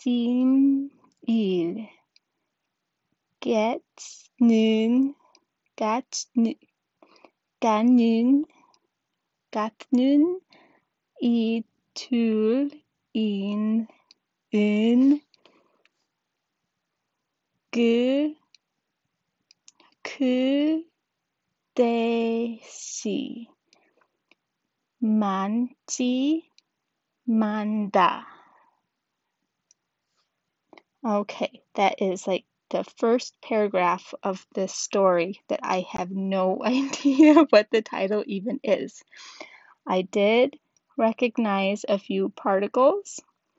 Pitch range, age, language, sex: 205-270 Hz, 20-39, Korean, female